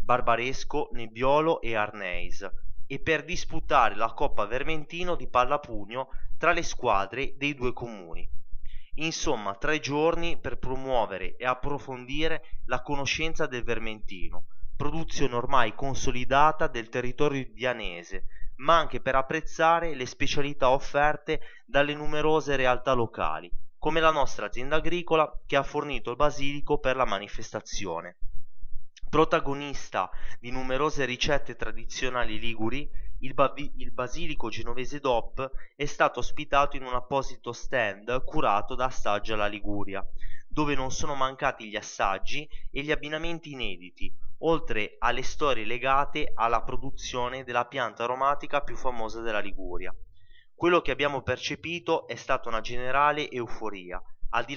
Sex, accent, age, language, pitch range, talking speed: male, native, 20-39, Italian, 115-145 Hz, 130 wpm